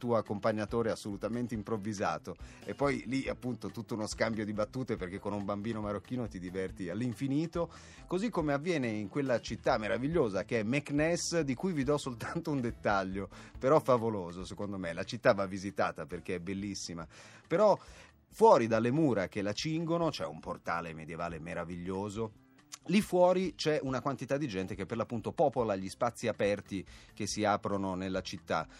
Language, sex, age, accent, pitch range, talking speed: Italian, male, 30-49, native, 95-115 Hz, 165 wpm